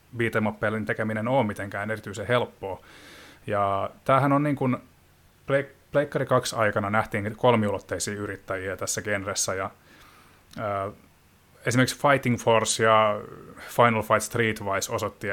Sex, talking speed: male, 115 wpm